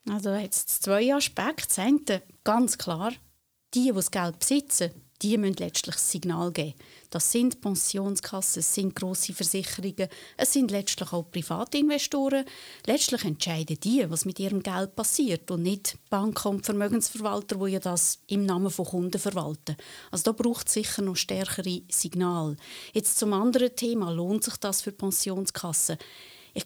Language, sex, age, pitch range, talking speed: German, female, 30-49, 180-225 Hz, 155 wpm